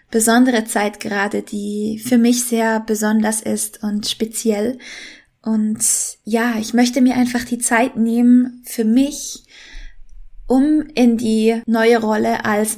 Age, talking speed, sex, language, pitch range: 20-39, 130 wpm, female, German, 215-245 Hz